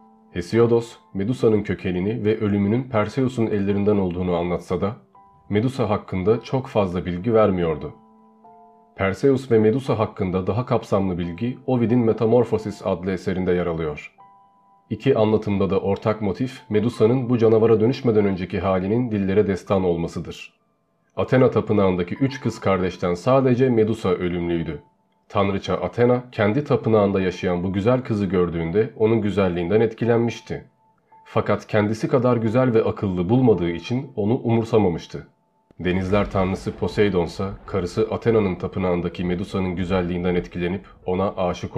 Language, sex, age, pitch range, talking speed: Turkish, male, 40-59, 95-115 Hz, 120 wpm